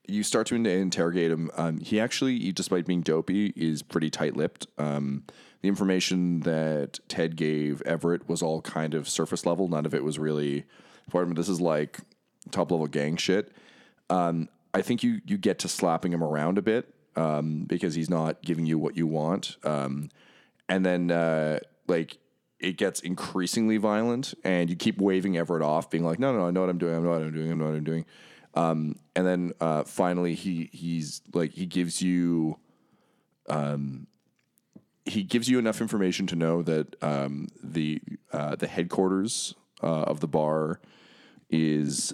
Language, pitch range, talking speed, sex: English, 75-90 Hz, 180 wpm, male